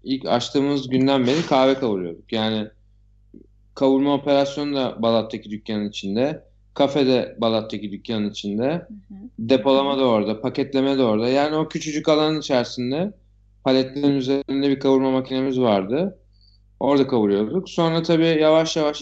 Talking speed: 125 wpm